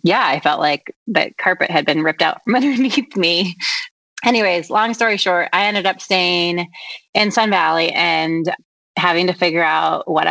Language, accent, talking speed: English, American, 175 wpm